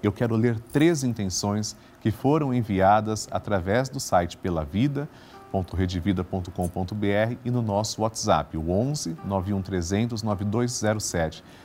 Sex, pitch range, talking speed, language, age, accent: male, 90-115 Hz, 105 wpm, Portuguese, 40-59, Brazilian